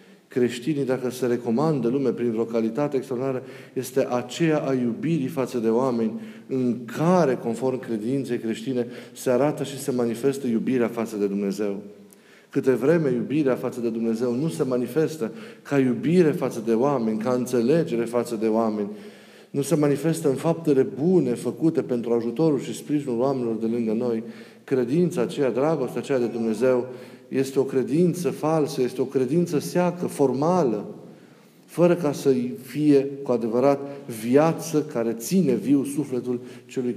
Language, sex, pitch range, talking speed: Romanian, male, 115-145 Hz, 150 wpm